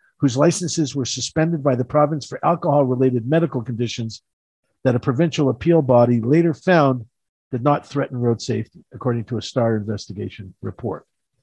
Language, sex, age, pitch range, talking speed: English, male, 50-69, 130-175 Hz, 150 wpm